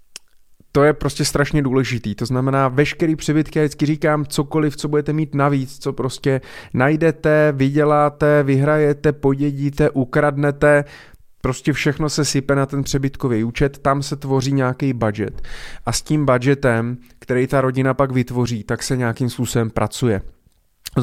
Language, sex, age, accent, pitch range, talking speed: Czech, male, 30-49, native, 115-140 Hz, 150 wpm